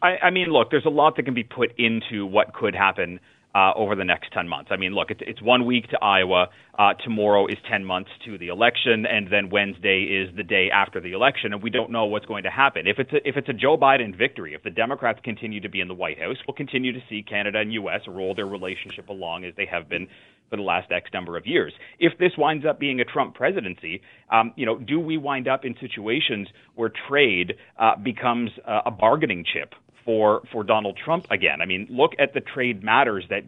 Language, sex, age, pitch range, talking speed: English, male, 30-49, 100-125 Hz, 230 wpm